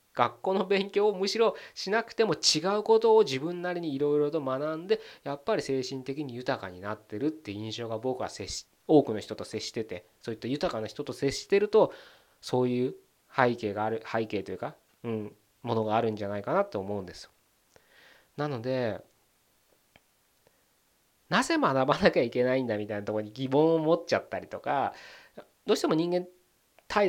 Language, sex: Japanese, male